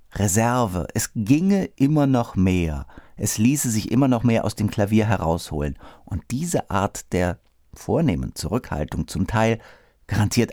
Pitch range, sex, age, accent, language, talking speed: 90-125 Hz, male, 50-69, German, German, 140 wpm